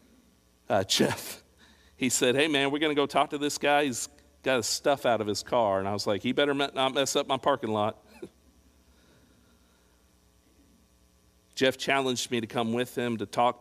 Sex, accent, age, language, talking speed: male, American, 50-69, English, 190 wpm